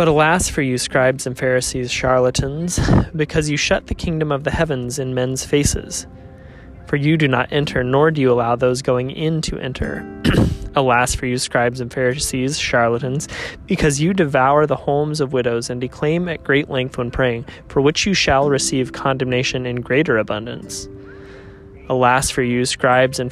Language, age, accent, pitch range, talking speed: English, 20-39, American, 125-150 Hz, 175 wpm